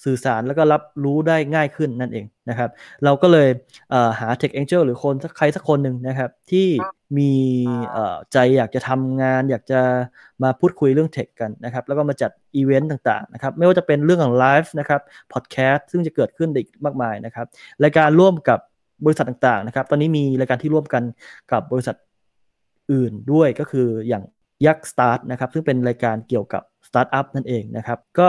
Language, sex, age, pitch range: Thai, male, 20-39, 125-155 Hz